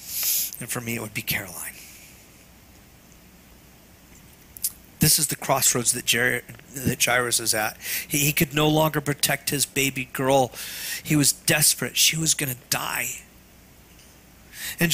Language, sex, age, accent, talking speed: English, male, 40-59, American, 135 wpm